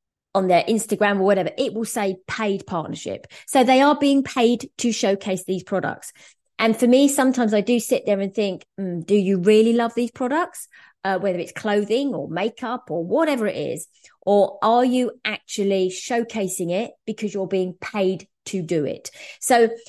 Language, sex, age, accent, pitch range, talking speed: English, female, 20-39, British, 190-235 Hz, 180 wpm